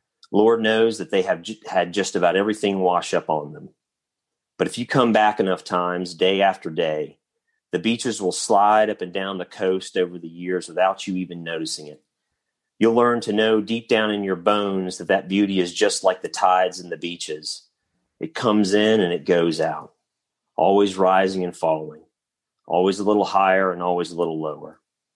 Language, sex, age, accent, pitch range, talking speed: English, male, 40-59, American, 90-110 Hz, 190 wpm